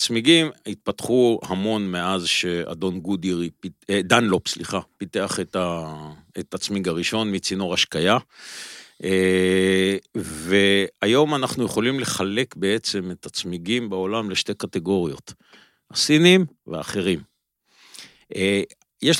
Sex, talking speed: male, 90 wpm